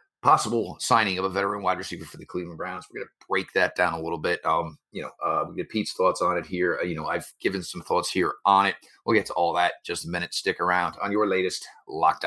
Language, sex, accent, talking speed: English, male, American, 275 wpm